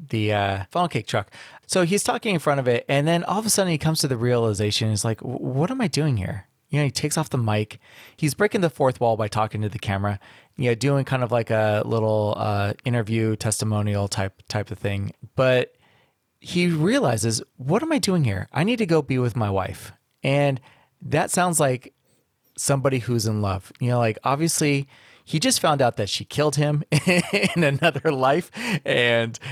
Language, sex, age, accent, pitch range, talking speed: English, male, 30-49, American, 110-145 Hz, 205 wpm